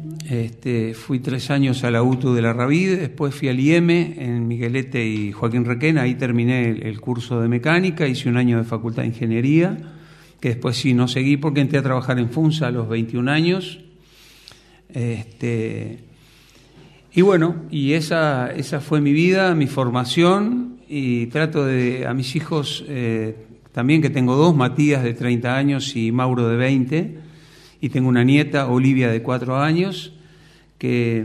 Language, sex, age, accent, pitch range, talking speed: Spanish, male, 50-69, Argentinian, 125-155 Hz, 165 wpm